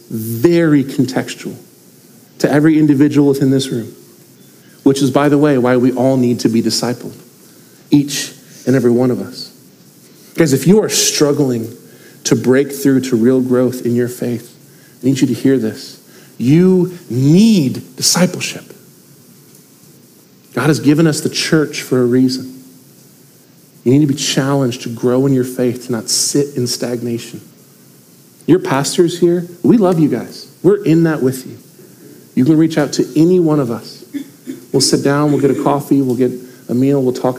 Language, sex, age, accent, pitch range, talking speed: English, male, 40-59, American, 125-150 Hz, 170 wpm